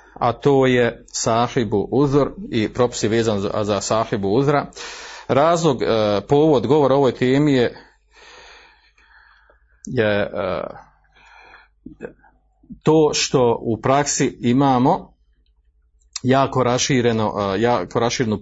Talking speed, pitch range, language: 85 wpm, 115-145 Hz, Croatian